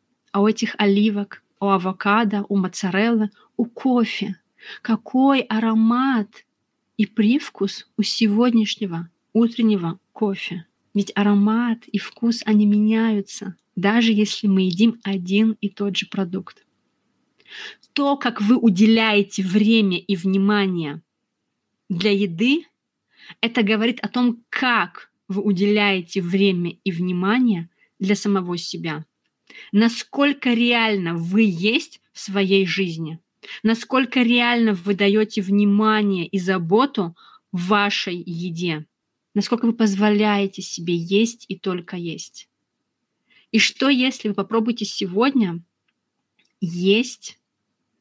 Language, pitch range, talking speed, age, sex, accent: Russian, 195-225 Hz, 110 wpm, 30-49, female, native